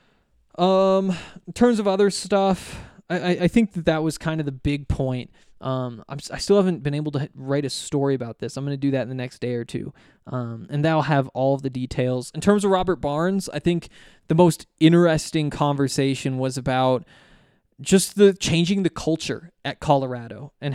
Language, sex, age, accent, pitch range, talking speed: English, male, 20-39, American, 135-170 Hz, 205 wpm